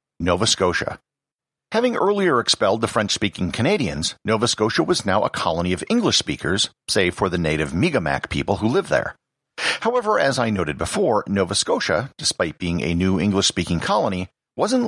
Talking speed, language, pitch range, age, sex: 170 wpm, English, 90-150 Hz, 50-69, male